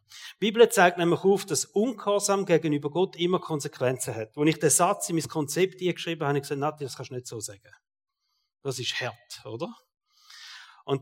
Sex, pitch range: male, 145-185 Hz